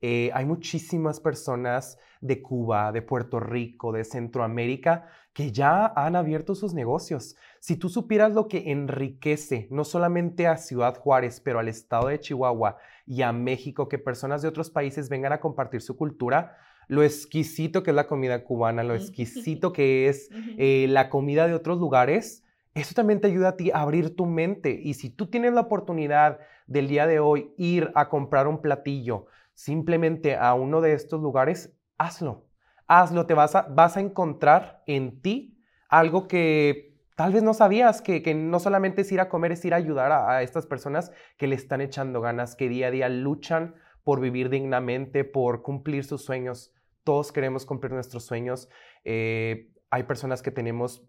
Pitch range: 125-165 Hz